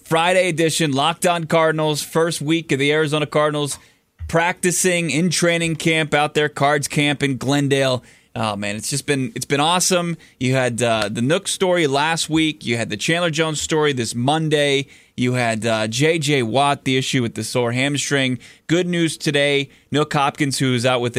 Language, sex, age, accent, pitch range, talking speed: English, male, 20-39, American, 125-160 Hz, 180 wpm